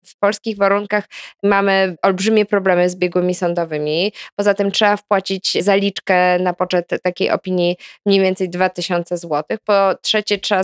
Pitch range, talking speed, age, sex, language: 185-215 Hz, 140 wpm, 20-39, female, Polish